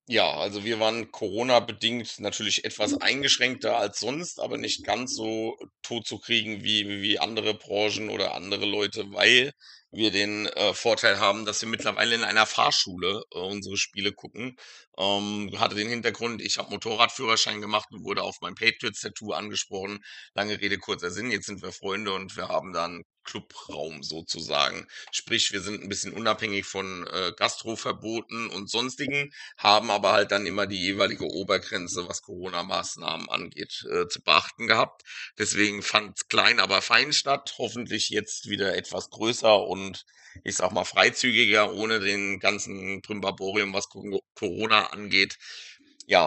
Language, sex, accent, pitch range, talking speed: German, male, German, 100-115 Hz, 155 wpm